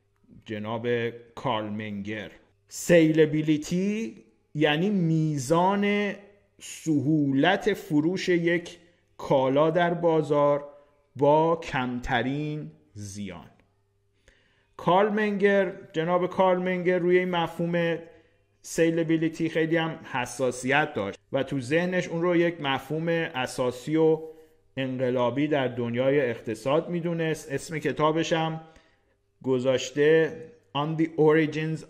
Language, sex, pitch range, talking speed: Persian, male, 120-160 Hz, 90 wpm